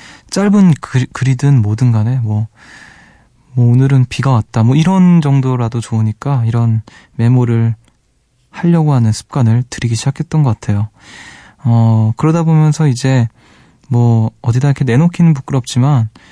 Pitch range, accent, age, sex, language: 115-145 Hz, native, 20-39, male, Korean